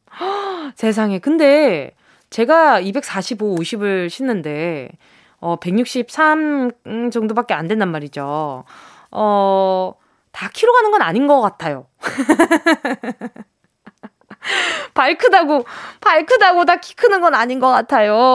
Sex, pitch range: female, 200-330 Hz